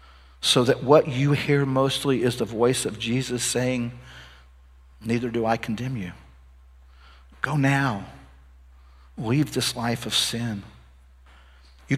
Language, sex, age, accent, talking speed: English, male, 50-69, American, 125 wpm